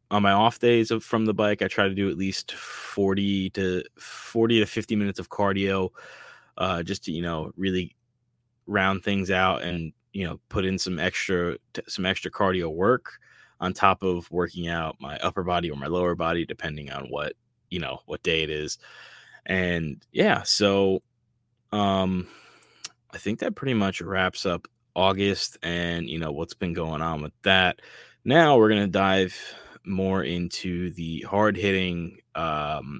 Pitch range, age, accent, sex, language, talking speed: 85-105 Hz, 20-39, American, male, English, 170 wpm